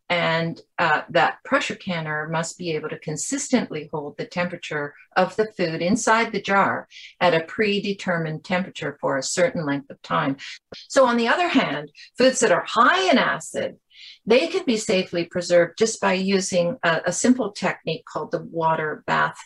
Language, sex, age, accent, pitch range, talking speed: English, female, 50-69, American, 150-200 Hz, 175 wpm